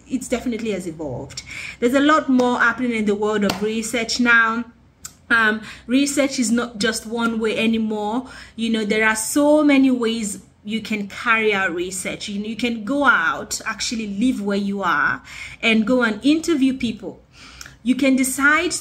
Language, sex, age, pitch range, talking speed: English, female, 30-49, 205-260 Hz, 165 wpm